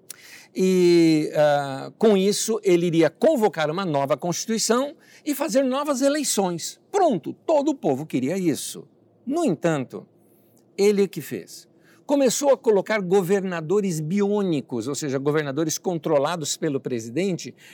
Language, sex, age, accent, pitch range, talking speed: Portuguese, male, 60-79, Brazilian, 160-225 Hz, 120 wpm